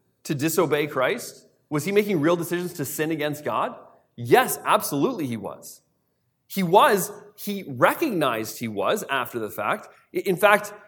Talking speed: 150 wpm